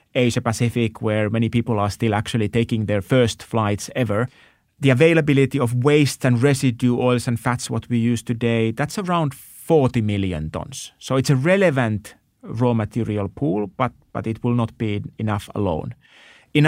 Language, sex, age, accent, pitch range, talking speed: English, male, 30-49, Finnish, 110-135 Hz, 165 wpm